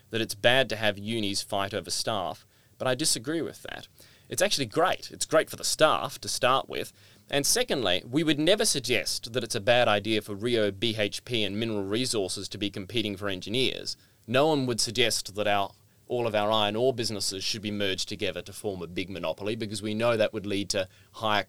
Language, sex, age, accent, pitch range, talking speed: English, male, 30-49, Australian, 100-115 Hz, 210 wpm